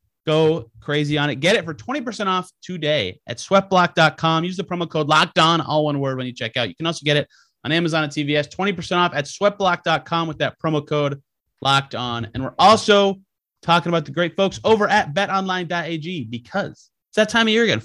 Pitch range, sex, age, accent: 140-185 Hz, male, 30-49, American